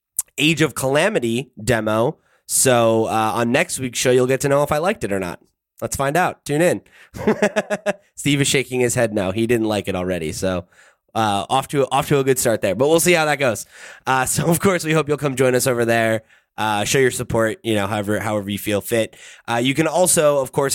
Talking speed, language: 235 wpm, English